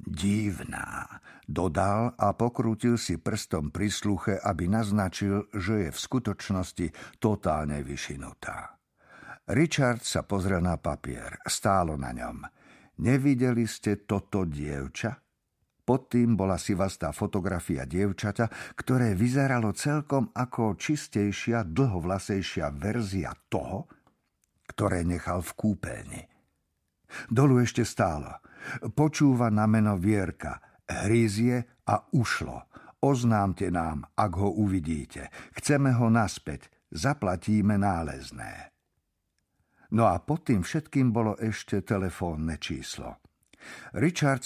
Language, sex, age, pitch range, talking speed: Slovak, male, 50-69, 90-120 Hz, 105 wpm